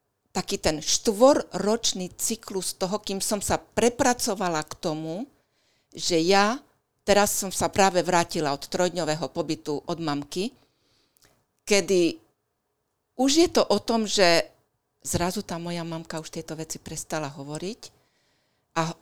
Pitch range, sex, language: 150-200 Hz, female, Slovak